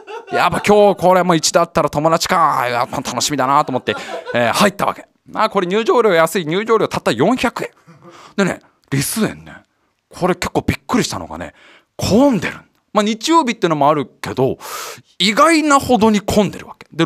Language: Japanese